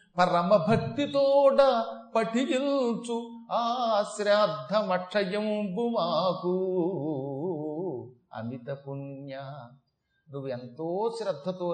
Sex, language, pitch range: male, Telugu, 150-220 Hz